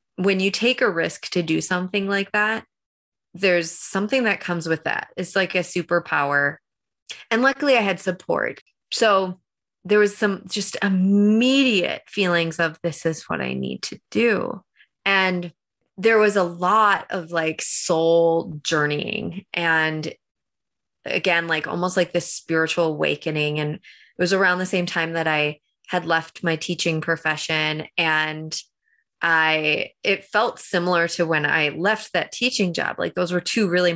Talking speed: 155 wpm